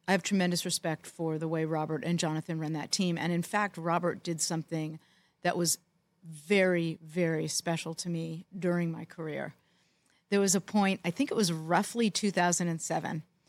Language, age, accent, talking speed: English, 50-69, American, 175 wpm